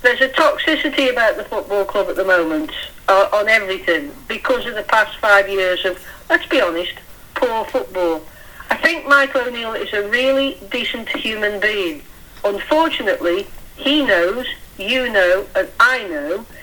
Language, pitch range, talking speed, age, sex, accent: English, 195-280 Hz, 155 wpm, 60-79, female, British